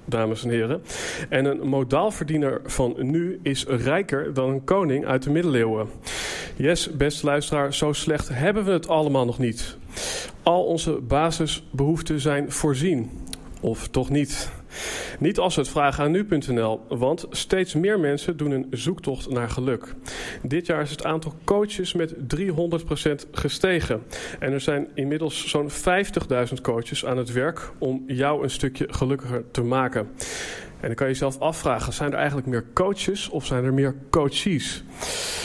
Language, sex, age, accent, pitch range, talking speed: Dutch, male, 40-59, Dutch, 130-160 Hz, 155 wpm